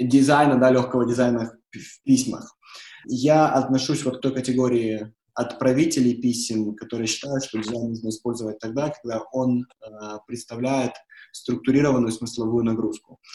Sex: male